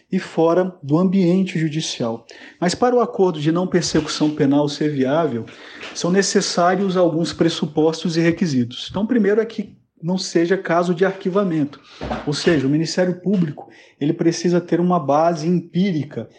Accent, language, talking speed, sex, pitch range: Brazilian, Portuguese, 145 wpm, male, 155-190 Hz